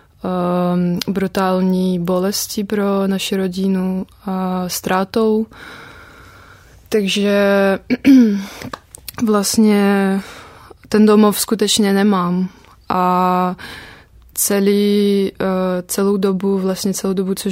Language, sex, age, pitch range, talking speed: Czech, female, 20-39, 185-200 Hz, 80 wpm